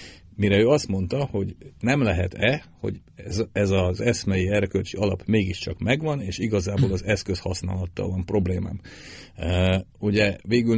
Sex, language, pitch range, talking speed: male, Hungarian, 90-115 Hz, 140 wpm